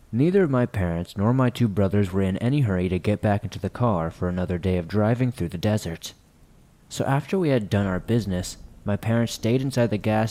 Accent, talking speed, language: American, 225 wpm, English